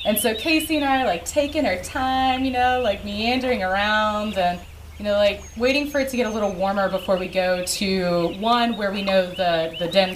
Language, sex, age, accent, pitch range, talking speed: English, female, 20-39, American, 170-210 Hz, 225 wpm